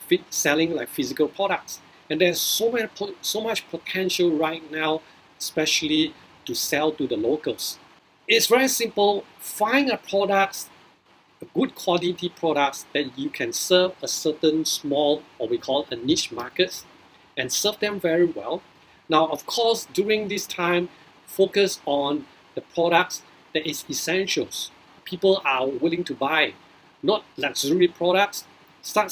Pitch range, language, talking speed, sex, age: 155-205 Hz, English, 140 wpm, male, 50-69